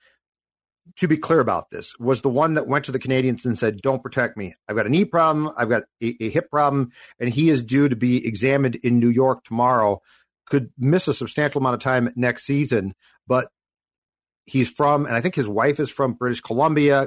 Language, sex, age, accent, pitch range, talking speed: English, male, 40-59, American, 115-140 Hz, 210 wpm